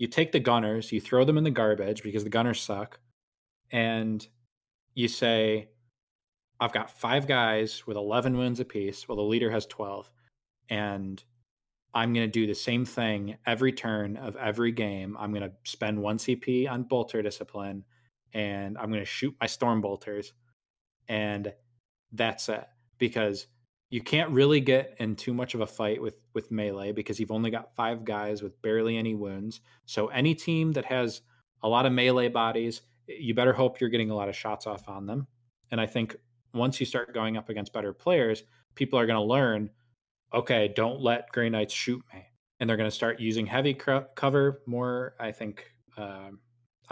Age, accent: 20-39, American